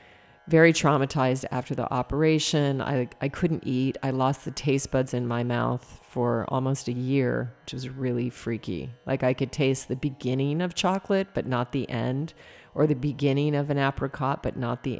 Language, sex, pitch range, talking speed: English, female, 125-145 Hz, 185 wpm